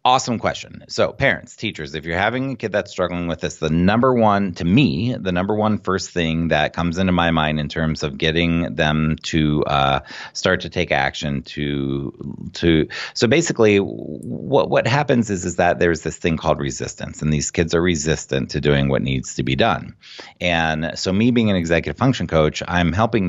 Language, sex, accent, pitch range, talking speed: English, male, American, 75-95 Hz, 200 wpm